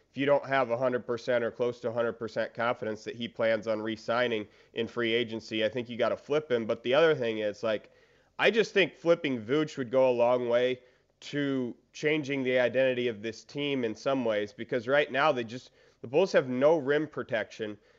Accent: American